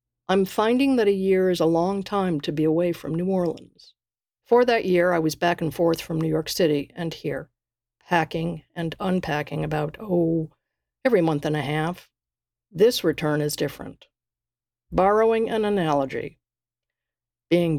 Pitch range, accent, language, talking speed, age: 150-185 Hz, American, English, 160 wpm, 50-69